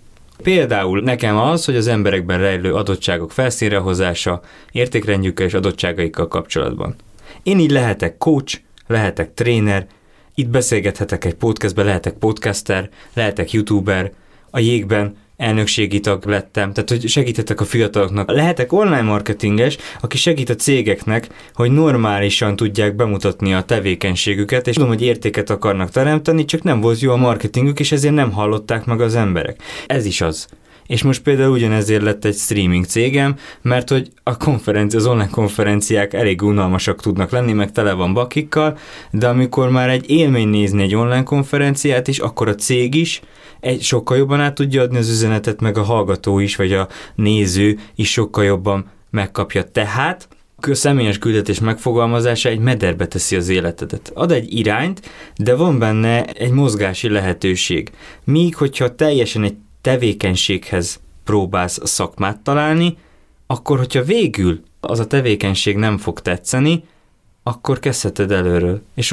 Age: 20-39